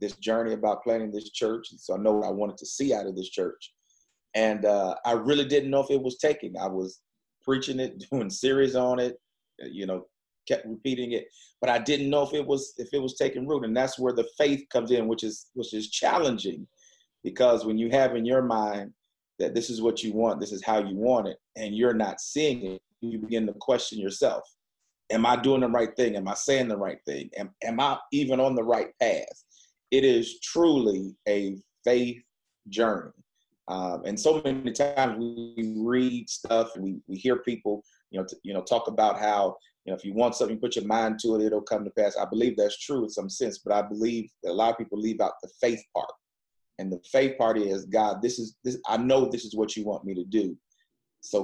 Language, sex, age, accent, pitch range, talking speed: English, male, 30-49, American, 105-130 Hz, 230 wpm